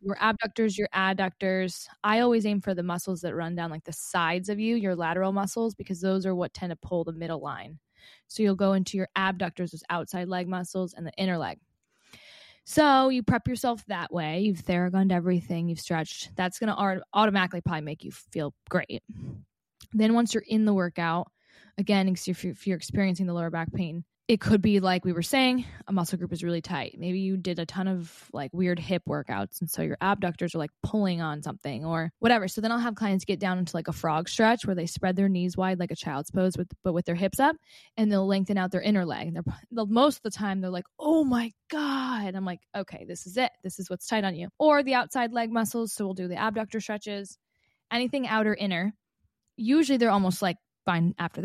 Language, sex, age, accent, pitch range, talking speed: English, female, 20-39, American, 175-215 Hz, 220 wpm